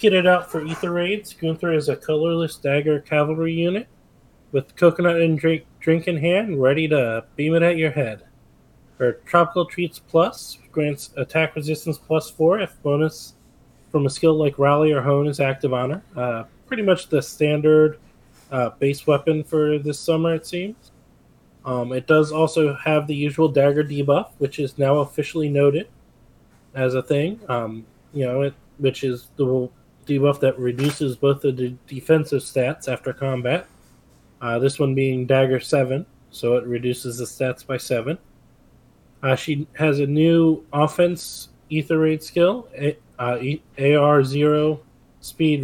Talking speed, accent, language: 160 wpm, American, English